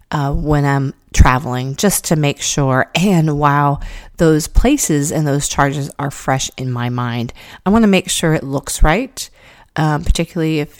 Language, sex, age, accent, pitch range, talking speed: English, female, 30-49, American, 140-170 Hz, 170 wpm